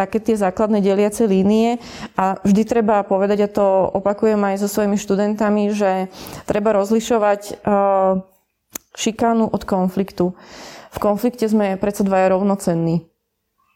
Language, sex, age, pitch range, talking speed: Slovak, female, 20-39, 195-215 Hz, 120 wpm